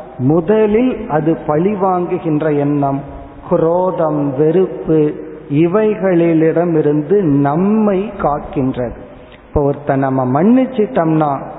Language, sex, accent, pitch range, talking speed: Tamil, male, native, 140-180 Hz, 65 wpm